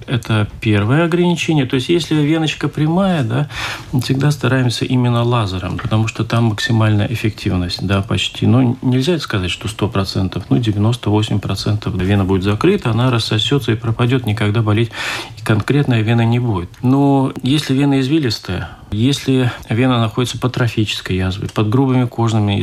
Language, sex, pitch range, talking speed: Russian, male, 105-130 Hz, 150 wpm